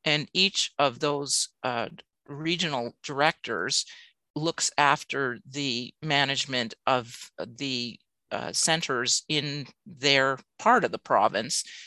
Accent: American